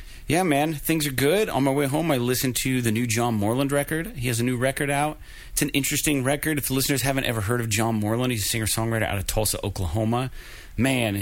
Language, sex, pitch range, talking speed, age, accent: English, male, 100-125 Hz, 235 wpm, 30-49, American